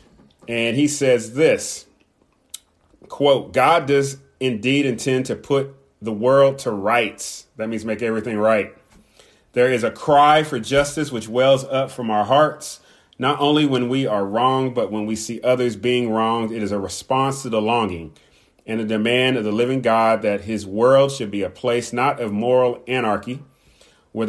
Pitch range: 105-130 Hz